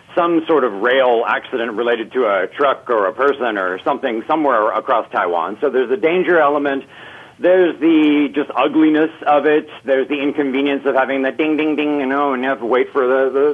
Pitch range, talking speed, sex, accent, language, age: 130-160 Hz, 215 wpm, male, American, English, 50-69